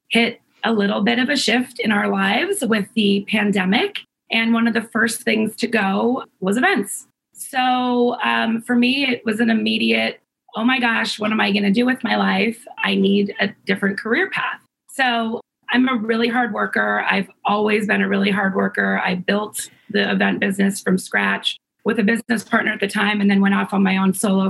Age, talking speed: 30-49, 205 wpm